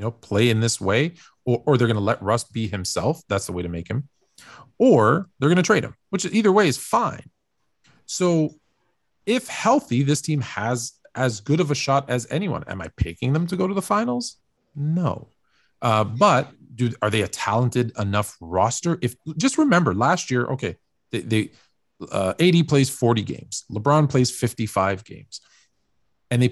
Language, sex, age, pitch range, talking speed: English, male, 40-59, 105-150 Hz, 185 wpm